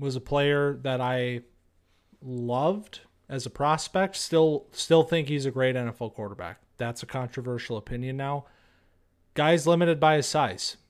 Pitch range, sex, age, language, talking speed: 120-155 Hz, male, 30-49, English, 150 wpm